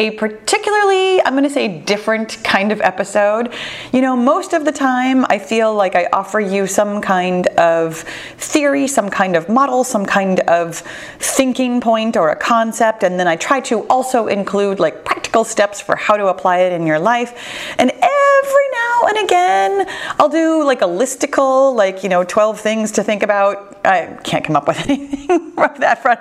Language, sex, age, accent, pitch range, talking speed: English, female, 30-49, American, 190-260 Hz, 185 wpm